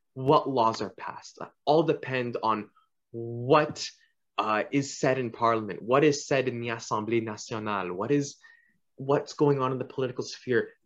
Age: 20-39